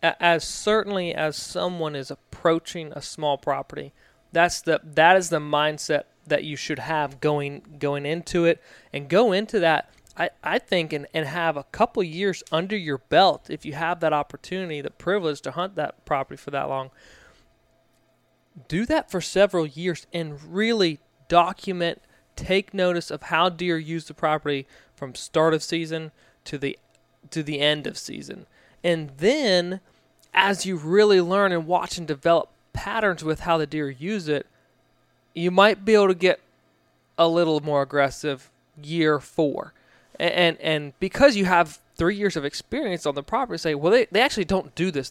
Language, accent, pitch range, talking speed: English, American, 150-180 Hz, 175 wpm